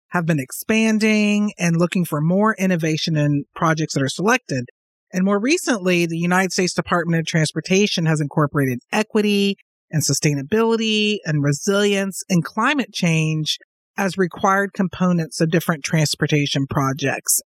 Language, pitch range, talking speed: English, 165-210 Hz, 135 wpm